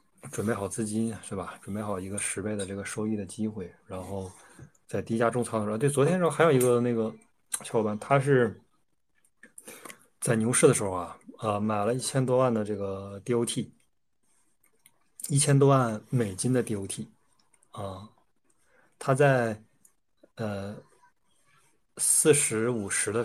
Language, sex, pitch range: Chinese, male, 100-120 Hz